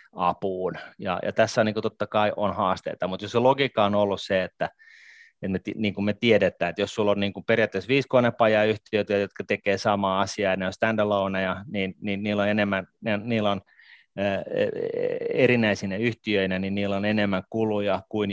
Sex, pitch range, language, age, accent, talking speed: male, 95-115 Hz, Finnish, 30-49, native, 195 wpm